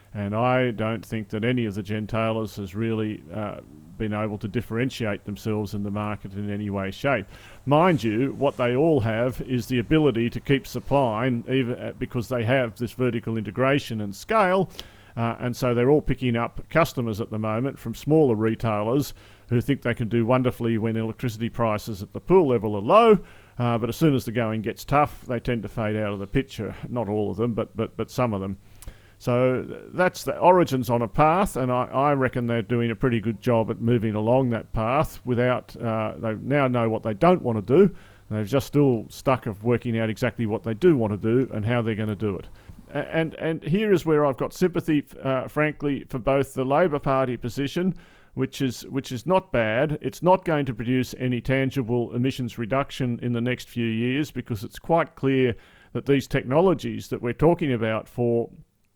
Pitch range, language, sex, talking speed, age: 110-135 Hz, English, male, 210 wpm, 40-59